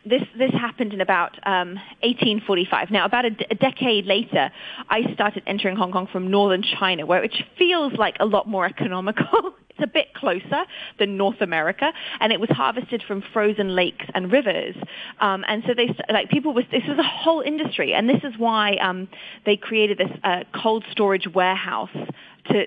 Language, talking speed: English, 190 wpm